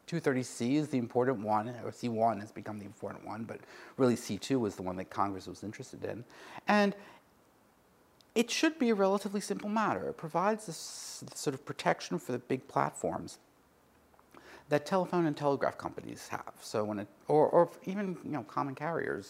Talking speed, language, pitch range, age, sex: 195 wpm, English, 115-185 Hz, 50-69, male